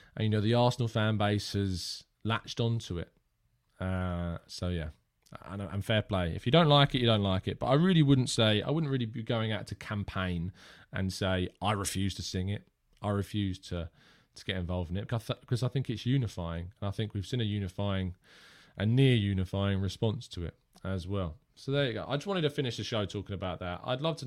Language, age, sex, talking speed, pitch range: English, 20-39, male, 225 wpm, 100-140 Hz